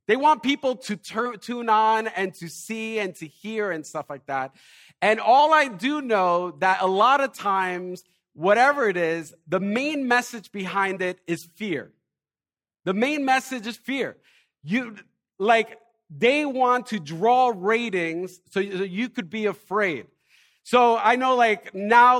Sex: male